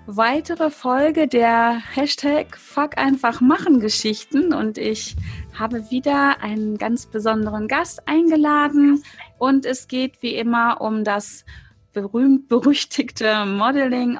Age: 30-49